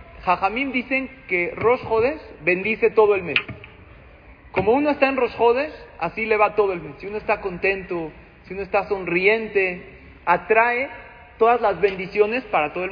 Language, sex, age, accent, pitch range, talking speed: Spanish, male, 40-59, Mexican, 175-235 Hz, 165 wpm